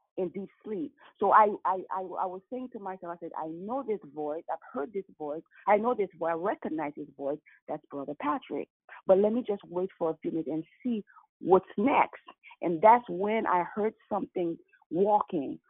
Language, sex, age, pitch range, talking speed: English, female, 30-49, 165-220 Hz, 205 wpm